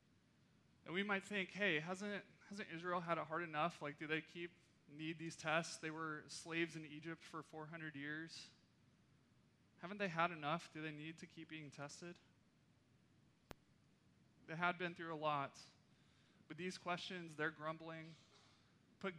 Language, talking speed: English, 155 wpm